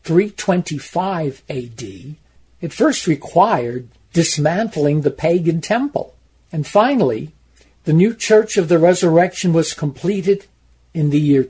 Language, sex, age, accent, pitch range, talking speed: Ukrainian, male, 60-79, American, 145-190 Hz, 115 wpm